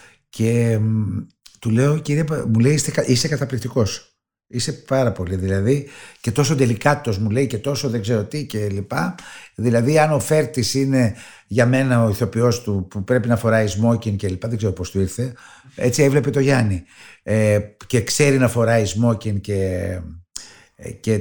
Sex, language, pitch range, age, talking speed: male, Greek, 105-135 Hz, 60-79, 155 wpm